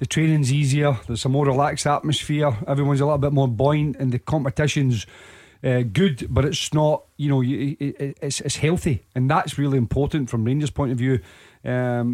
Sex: male